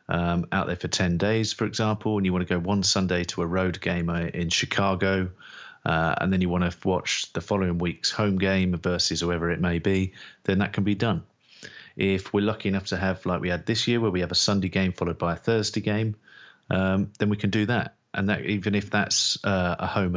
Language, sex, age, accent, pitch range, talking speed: English, male, 30-49, British, 90-105 Hz, 235 wpm